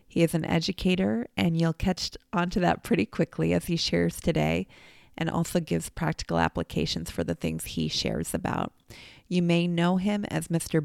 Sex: female